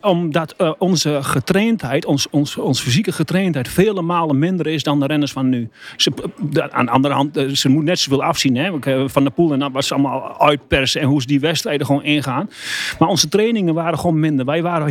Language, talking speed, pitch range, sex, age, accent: Dutch, 220 wpm, 140-170 Hz, male, 40-59, Dutch